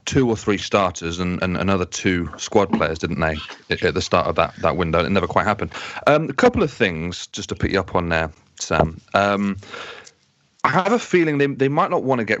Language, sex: English, male